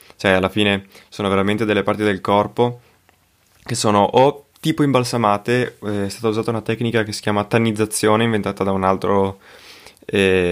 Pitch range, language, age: 95-110 Hz, Italian, 20-39